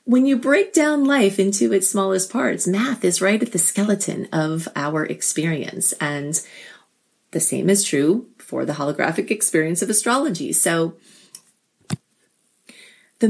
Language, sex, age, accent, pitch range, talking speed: English, female, 30-49, American, 165-215 Hz, 140 wpm